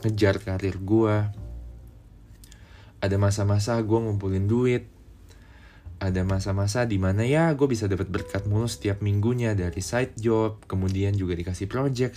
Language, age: Indonesian, 20-39